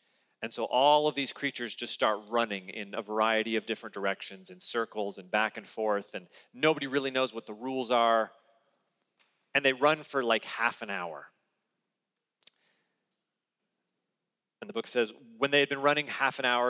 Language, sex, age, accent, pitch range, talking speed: English, male, 40-59, American, 105-140 Hz, 175 wpm